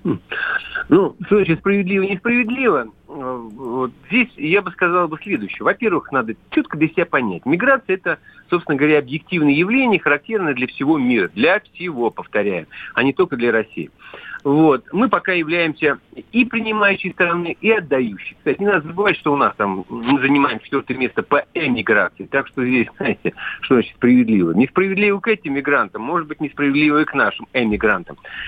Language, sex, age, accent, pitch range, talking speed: Russian, male, 50-69, native, 120-190 Hz, 165 wpm